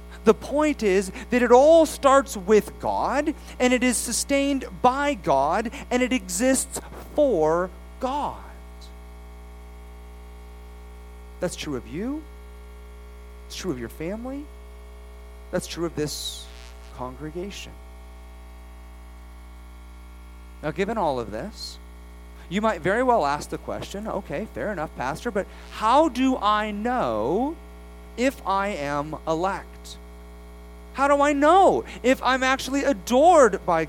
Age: 40-59